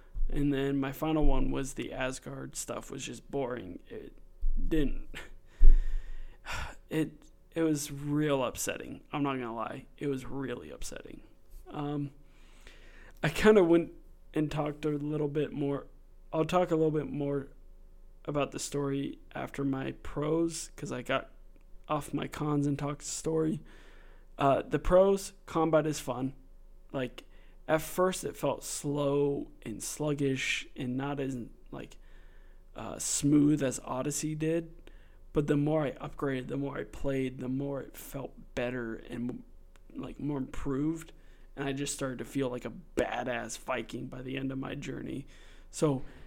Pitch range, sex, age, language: 130-150 Hz, male, 20-39, English